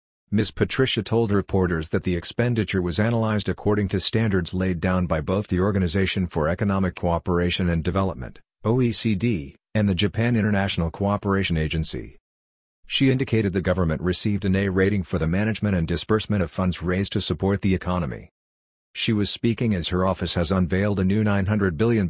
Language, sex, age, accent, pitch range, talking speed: English, male, 50-69, American, 85-105 Hz, 170 wpm